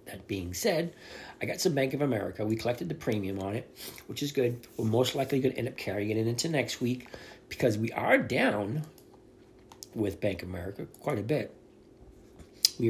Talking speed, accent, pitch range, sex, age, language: 190 wpm, American, 105-135 Hz, male, 40-59, English